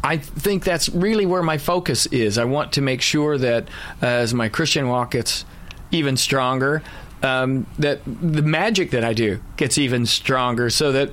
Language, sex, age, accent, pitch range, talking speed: English, male, 40-59, American, 125-155 Hz, 185 wpm